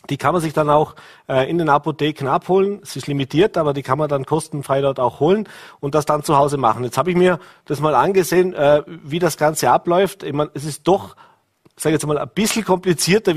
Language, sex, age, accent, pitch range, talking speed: German, male, 40-59, German, 140-170 Hz, 230 wpm